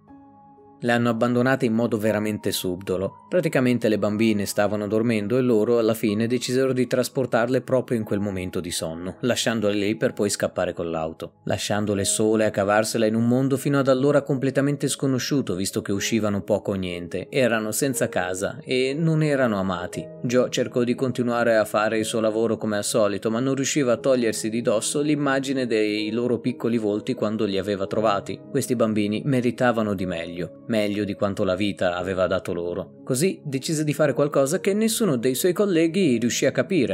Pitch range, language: 105-140 Hz, Italian